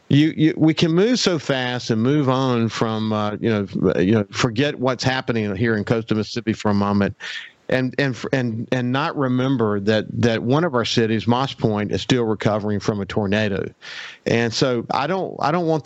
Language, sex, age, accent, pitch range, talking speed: English, male, 50-69, American, 110-130 Hz, 200 wpm